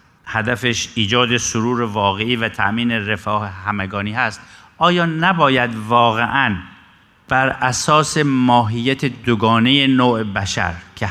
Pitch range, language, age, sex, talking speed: 110-145 Hz, Persian, 50-69, male, 105 wpm